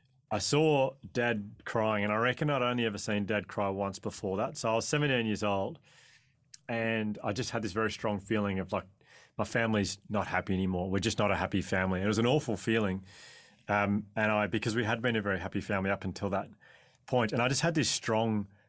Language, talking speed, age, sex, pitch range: English, 220 wpm, 30-49, male, 100-115 Hz